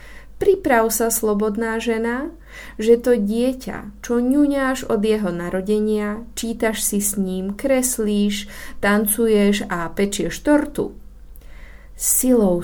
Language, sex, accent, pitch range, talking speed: Czech, female, native, 180-230 Hz, 105 wpm